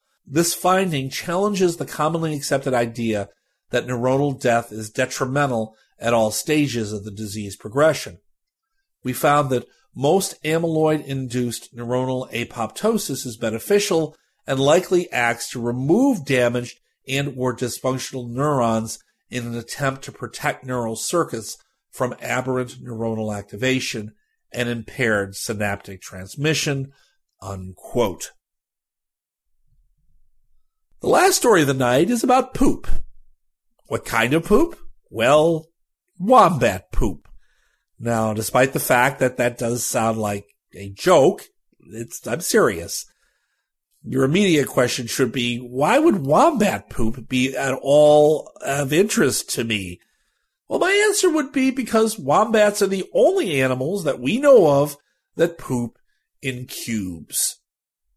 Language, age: English, 50-69